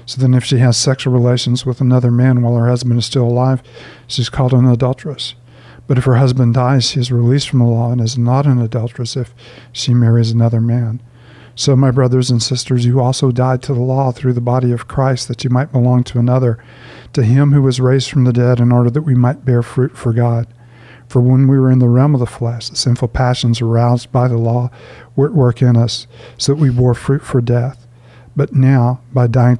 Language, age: English, 50-69